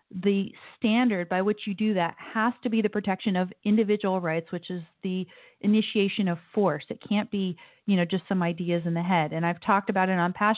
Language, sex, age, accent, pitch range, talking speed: English, female, 40-59, American, 170-200 Hz, 220 wpm